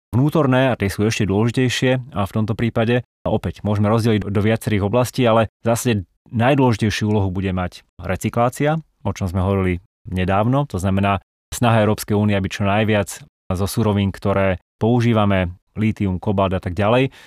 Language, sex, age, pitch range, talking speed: Slovak, male, 30-49, 95-115 Hz, 155 wpm